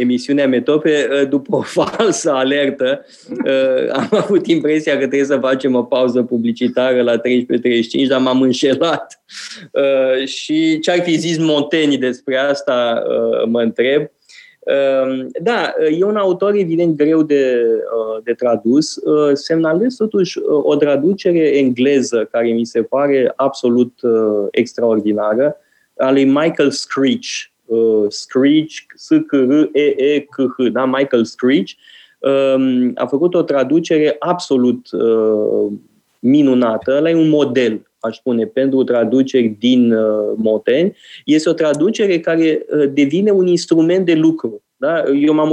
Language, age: Romanian, 20-39